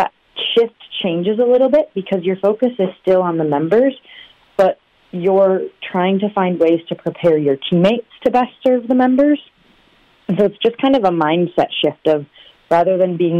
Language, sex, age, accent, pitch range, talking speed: English, female, 30-49, American, 150-180 Hz, 185 wpm